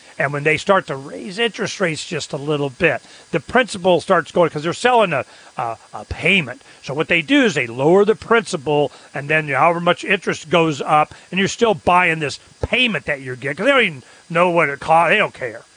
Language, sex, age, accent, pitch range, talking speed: English, male, 40-59, American, 155-210 Hz, 230 wpm